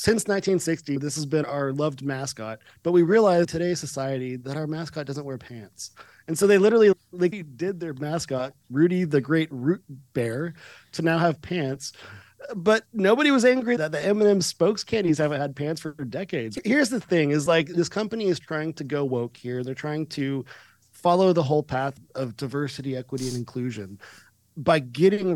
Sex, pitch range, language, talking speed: male, 135-175 Hz, English, 185 wpm